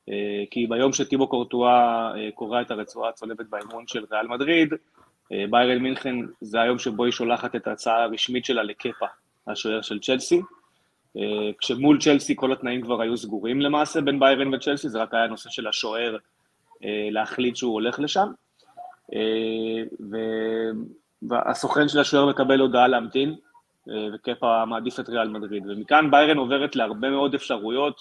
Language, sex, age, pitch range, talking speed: Hebrew, male, 20-39, 110-135 Hz, 140 wpm